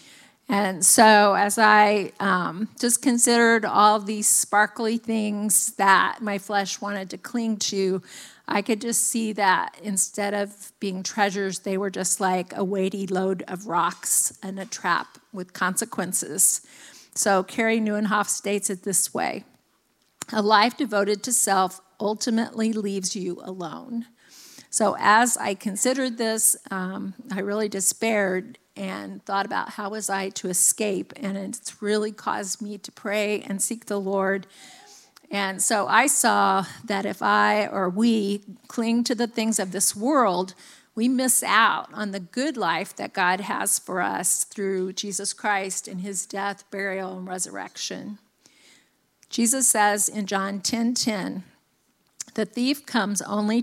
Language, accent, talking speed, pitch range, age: English, American, 145 wpm, 195-225 Hz, 50-69